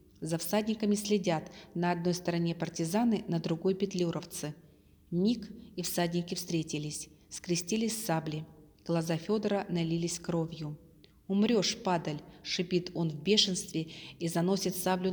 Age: 30-49